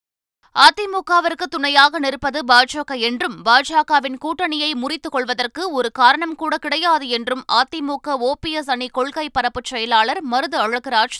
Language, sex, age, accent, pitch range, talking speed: Tamil, female, 20-39, native, 250-310 Hz, 130 wpm